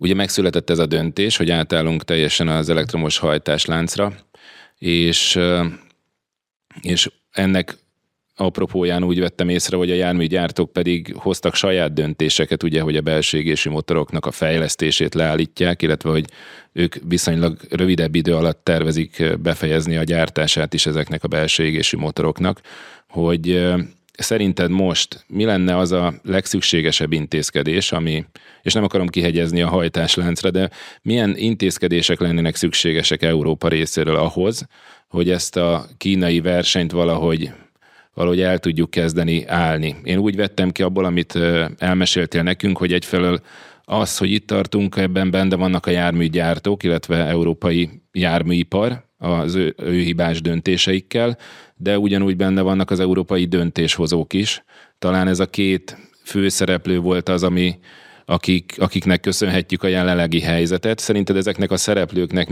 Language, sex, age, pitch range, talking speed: Hungarian, male, 30-49, 85-95 Hz, 130 wpm